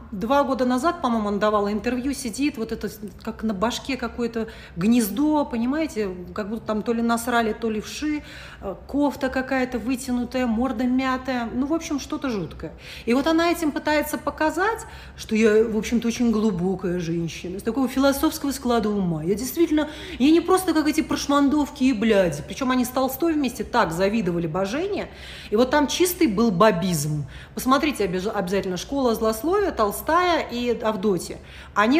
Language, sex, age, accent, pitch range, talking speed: Russian, female, 40-59, native, 215-290 Hz, 160 wpm